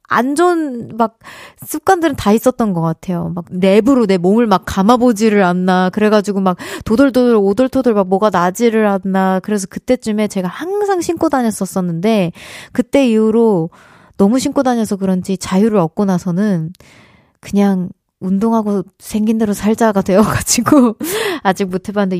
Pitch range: 190-255 Hz